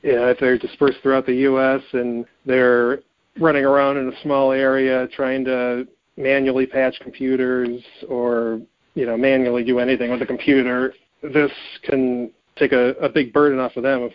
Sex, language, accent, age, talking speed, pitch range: male, English, American, 40-59, 170 wpm, 120-135 Hz